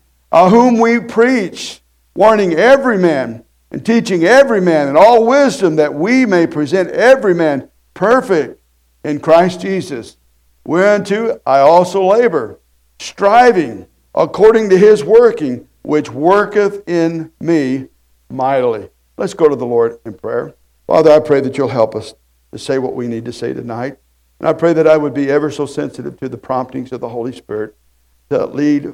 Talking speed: 165 wpm